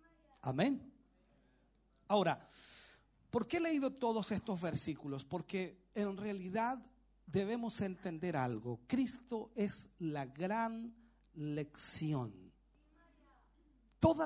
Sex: male